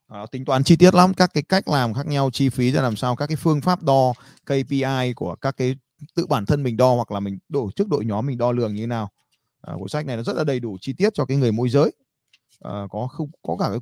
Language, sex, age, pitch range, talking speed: Vietnamese, male, 20-39, 110-140 Hz, 285 wpm